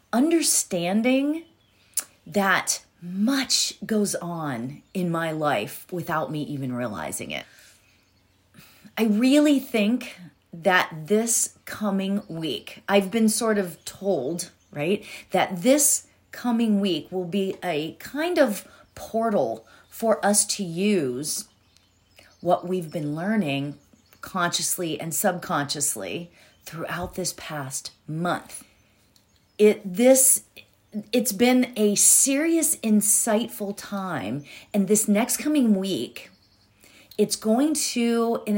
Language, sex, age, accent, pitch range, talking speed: English, female, 30-49, American, 165-220 Hz, 105 wpm